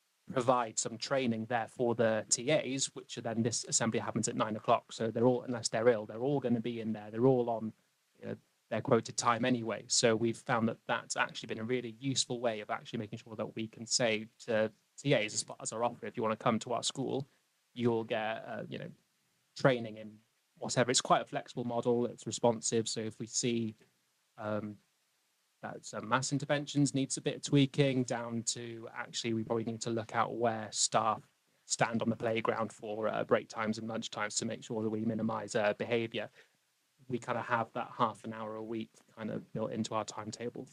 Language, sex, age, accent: English, male, 20-39, British